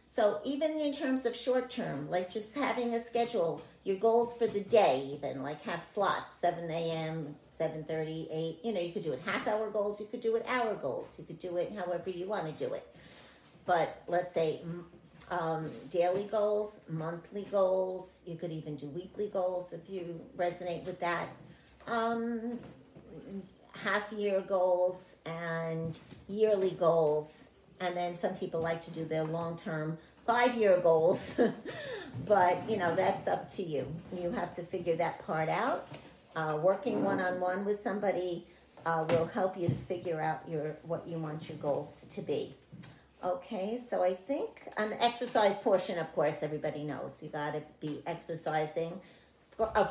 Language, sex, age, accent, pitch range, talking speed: English, female, 50-69, American, 165-210 Hz, 160 wpm